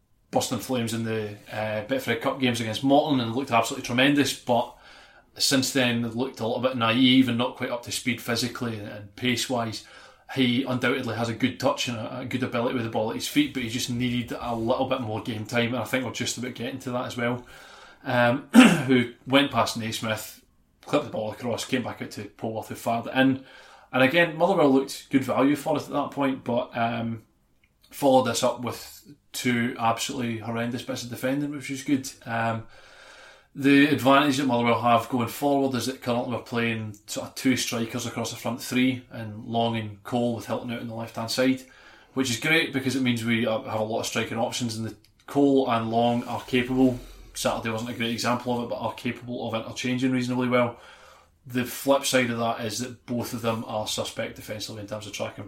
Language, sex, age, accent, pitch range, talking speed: English, male, 20-39, British, 115-130 Hz, 210 wpm